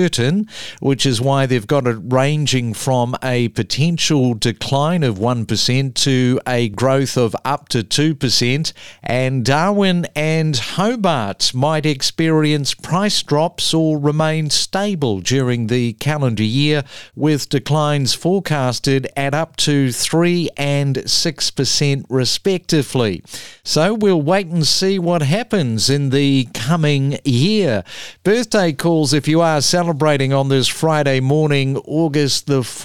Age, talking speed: 50-69, 125 wpm